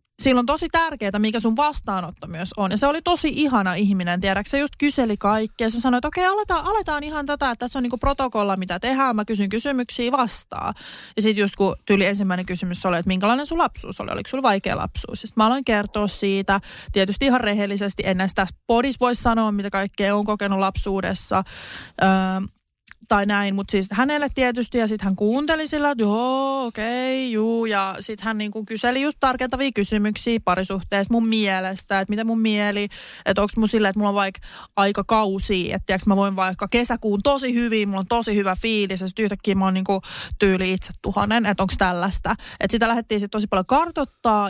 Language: Finnish